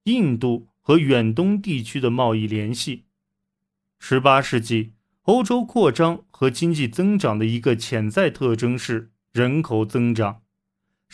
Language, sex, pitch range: Chinese, male, 115-170 Hz